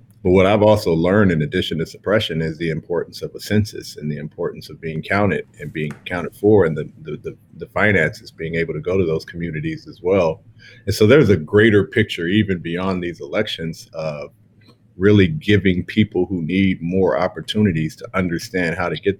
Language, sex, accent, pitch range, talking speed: English, male, American, 80-105 Hz, 190 wpm